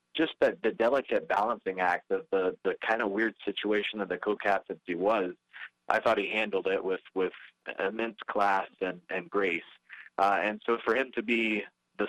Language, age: English, 20-39